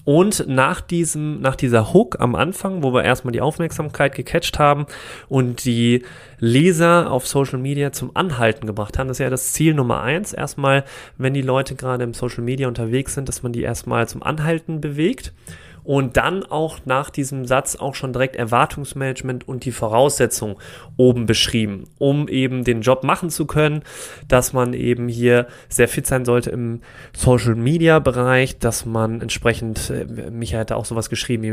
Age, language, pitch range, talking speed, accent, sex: 30-49, German, 115-140 Hz, 175 wpm, German, male